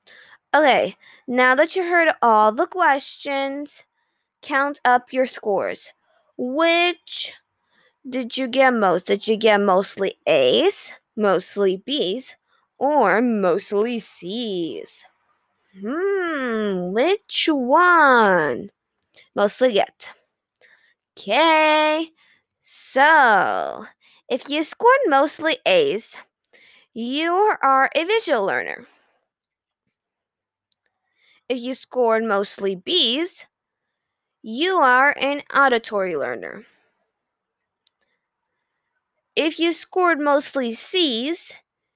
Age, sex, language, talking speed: 20-39, female, English, 85 wpm